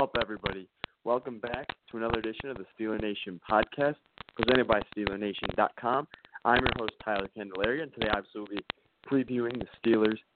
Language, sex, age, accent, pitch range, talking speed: English, male, 20-39, American, 105-125 Hz, 155 wpm